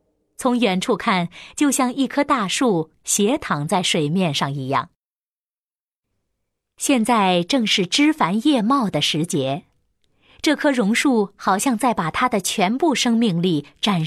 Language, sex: Chinese, female